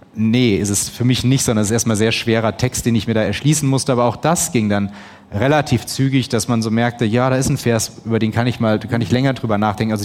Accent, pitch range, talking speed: German, 110-130 Hz, 275 wpm